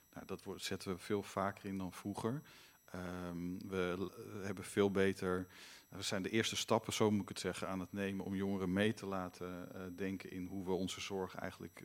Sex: male